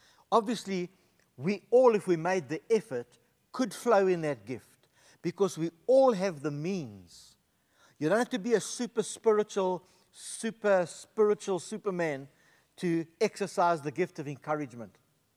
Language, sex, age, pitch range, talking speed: English, male, 60-79, 155-200 Hz, 140 wpm